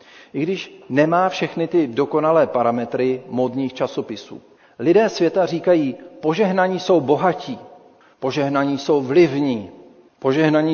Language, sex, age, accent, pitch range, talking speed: Czech, male, 40-59, native, 125-170 Hz, 105 wpm